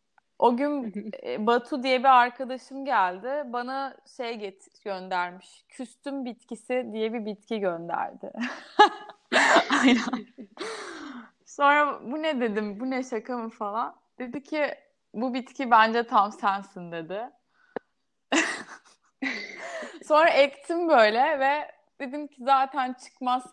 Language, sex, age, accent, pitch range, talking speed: Turkish, female, 30-49, native, 215-275 Hz, 105 wpm